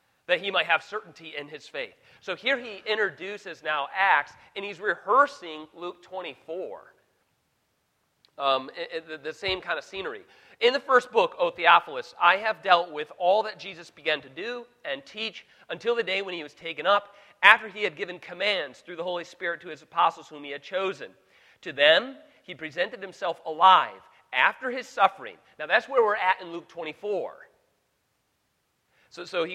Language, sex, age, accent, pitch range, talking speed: English, male, 40-59, American, 170-240 Hz, 175 wpm